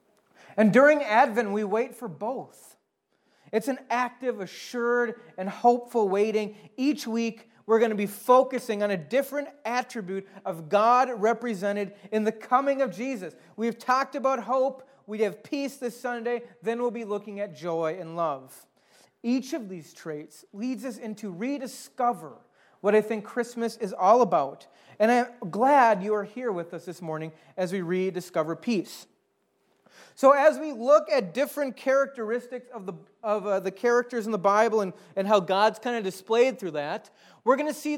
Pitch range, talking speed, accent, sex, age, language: 205-260 Hz, 170 wpm, American, male, 30-49, English